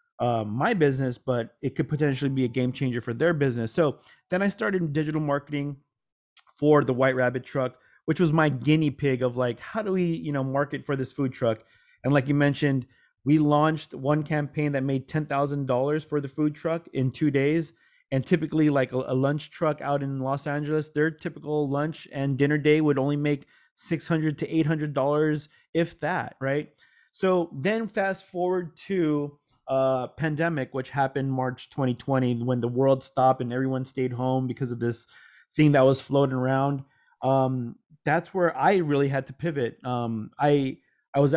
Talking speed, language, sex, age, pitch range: 180 wpm, English, male, 30-49, 130-155 Hz